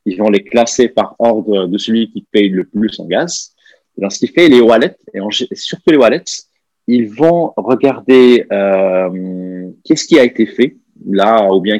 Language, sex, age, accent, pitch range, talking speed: French, male, 30-49, French, 100-125 Hz, 190 wpm